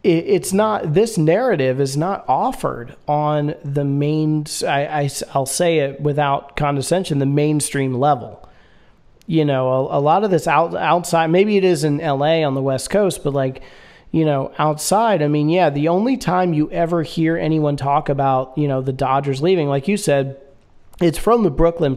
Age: 40-59